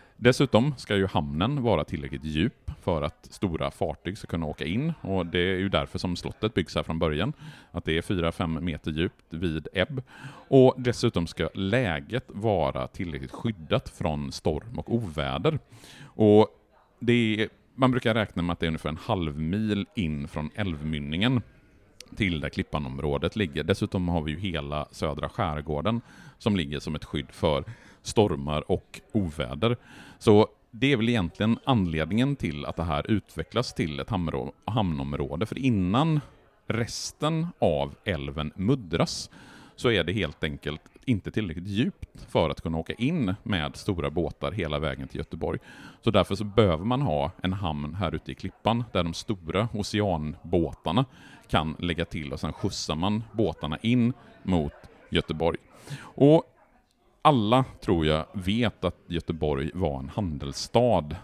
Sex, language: male, Swedish